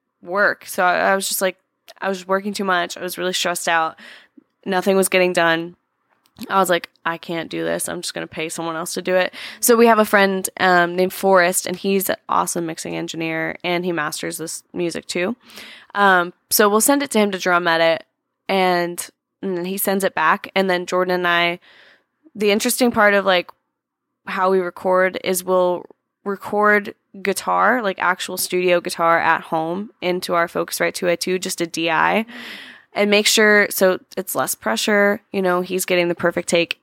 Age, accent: 20-39, American